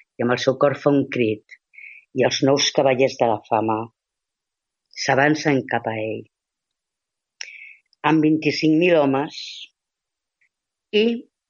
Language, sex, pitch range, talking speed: Spanish, female, 125-165 Hz, 110 wpm